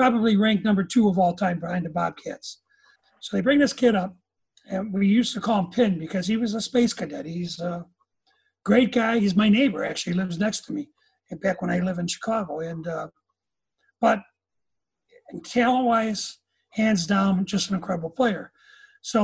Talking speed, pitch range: 185 wpm, 190-245 Hz